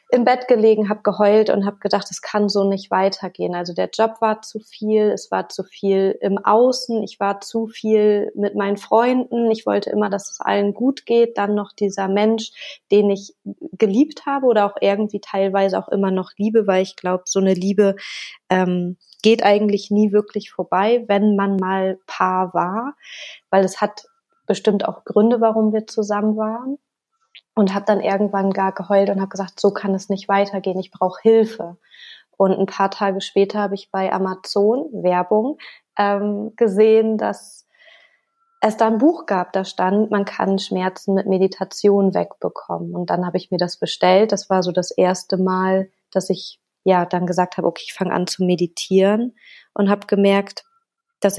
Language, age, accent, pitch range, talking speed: German, 20-39, German, 190-220 Hz, 180 wpm